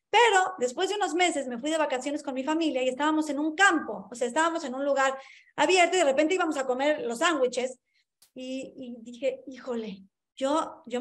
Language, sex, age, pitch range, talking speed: Spanish, female, 30-49, 255-340 Hz, 205 wpm